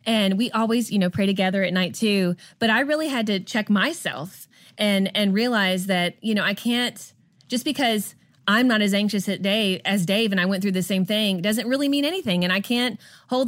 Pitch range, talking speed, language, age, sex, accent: 185-230 Hz, 225 wpm, English, 20-39, female, American